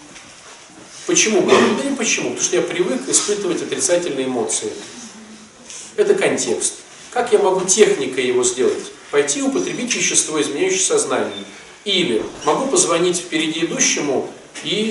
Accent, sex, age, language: native, male, 40-59, Russian